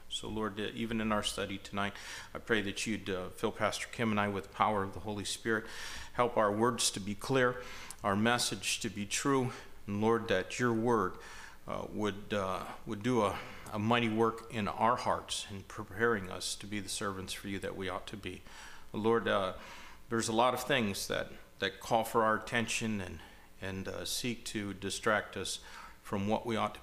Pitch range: 95-115 Hz